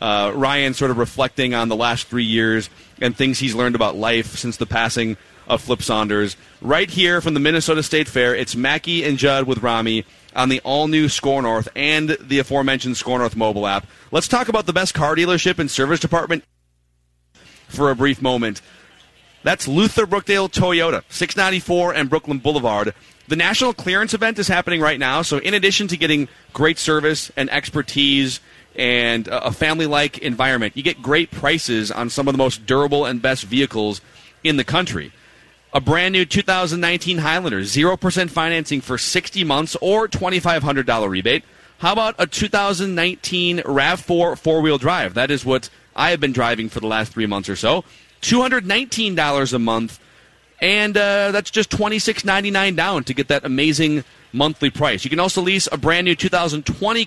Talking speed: 170 wpm